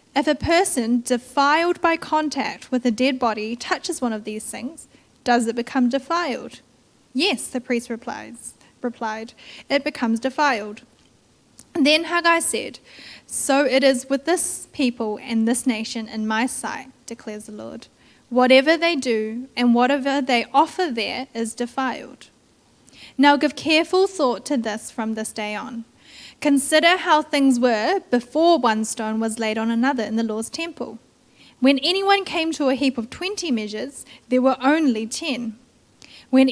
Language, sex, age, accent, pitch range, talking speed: English, female, 10-29, Australian, 235-290 Hz, 155 wpm